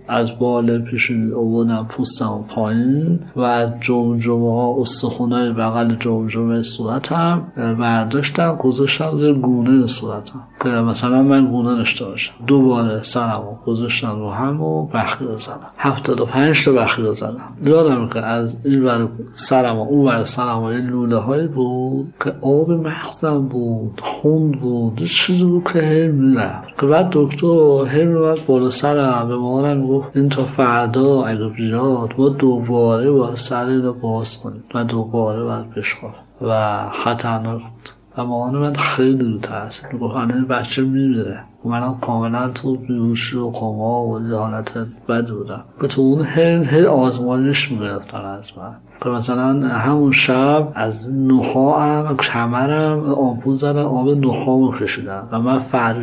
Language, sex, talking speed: Persian, male, 130 wpm